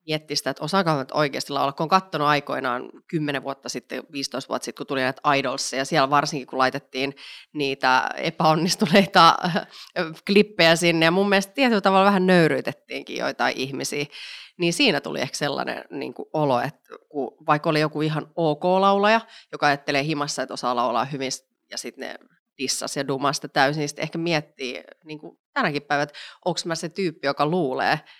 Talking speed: 170 wpm